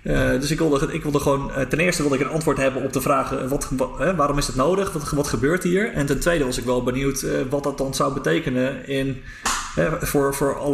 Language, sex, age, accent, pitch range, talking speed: Dutch, male, 30-49, Dutch, 125-150 Hz, 265 wpm